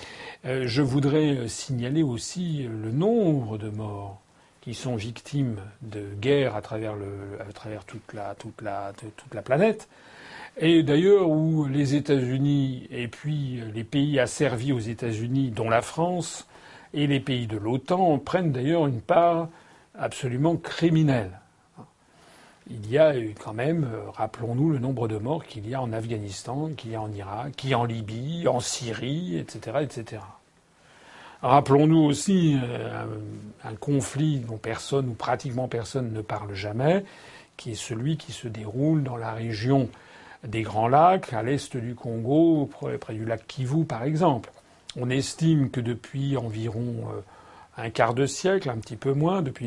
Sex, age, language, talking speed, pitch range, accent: male, 40-59, French, 150 wpm, 110-145 Hz, French